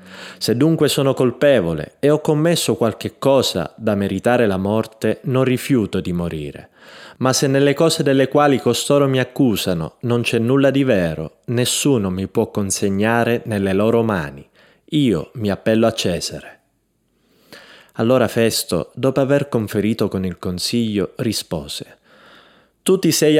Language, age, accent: Italian, 30-49, native